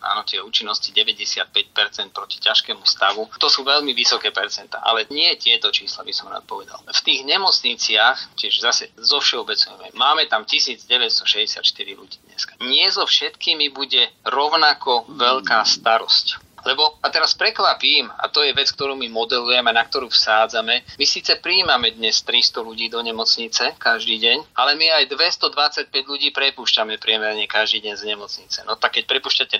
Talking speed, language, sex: 160 wpm, Slovak, male